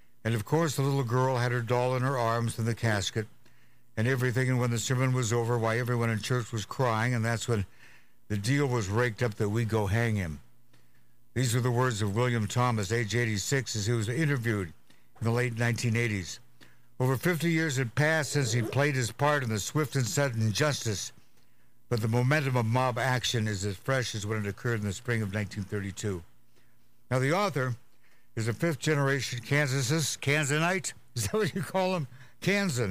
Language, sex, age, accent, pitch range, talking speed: English, male, 60-79, American, 110-130 Hz, 195 wpm